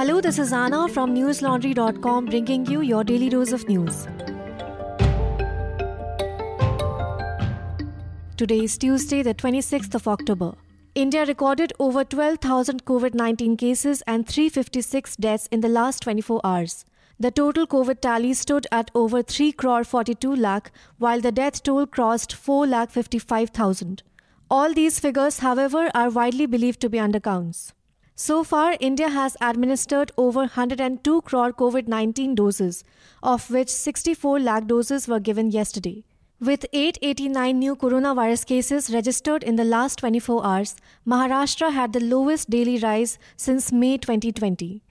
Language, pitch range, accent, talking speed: English, 225-275 Hz, Indian, 130 wpm